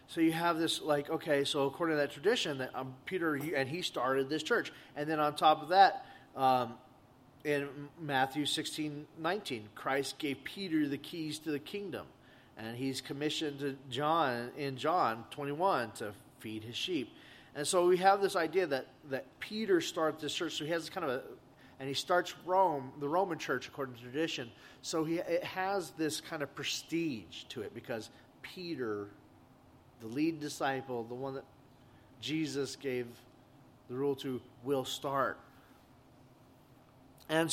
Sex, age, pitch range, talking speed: male, 30-49, 125-155 Hz, 170 wpm